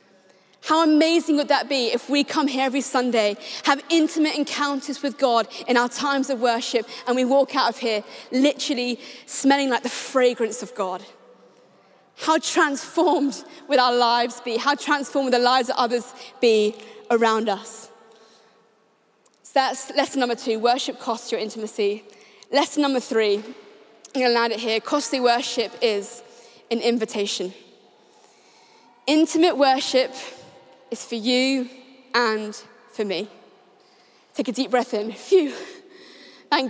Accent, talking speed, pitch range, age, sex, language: British, 140 wpm, 220-275 Hz, 20-39, female, English